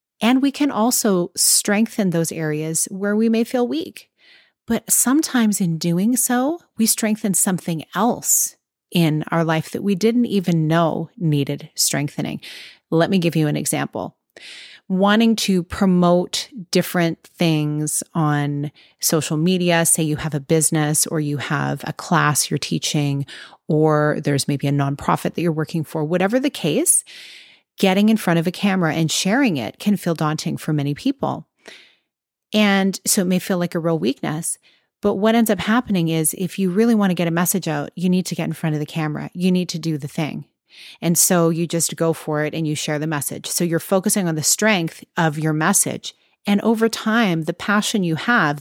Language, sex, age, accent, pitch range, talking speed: English, female, 30-49, American, 160-210 Hz, 185 wpm